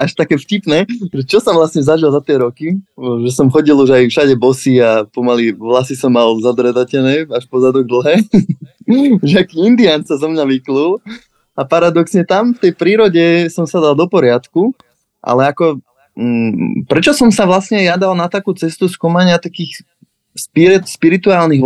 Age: 20-39